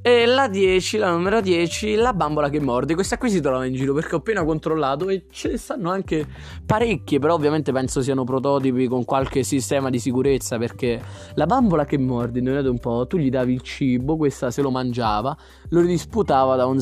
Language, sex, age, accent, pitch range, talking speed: Italian, male, 20-39, native, 130-175 Hz, 205 wpm